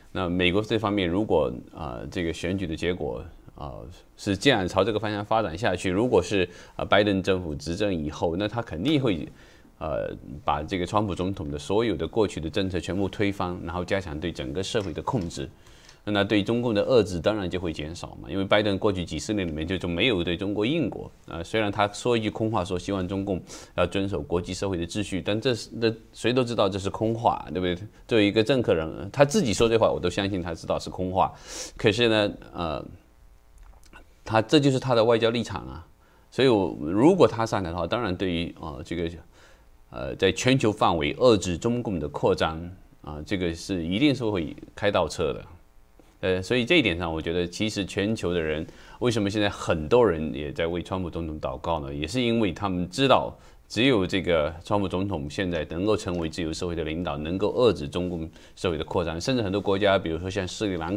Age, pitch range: 20-39, 85-105 Hz